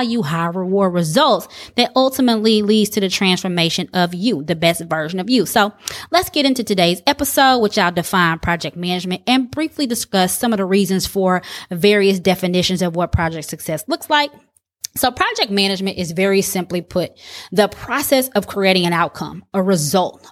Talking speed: 175 wpm